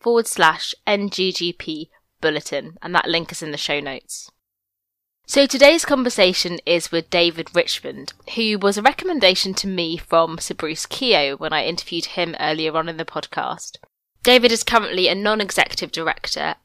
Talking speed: 160 wpm